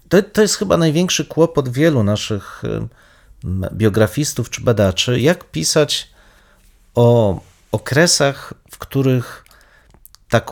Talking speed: 110 wpm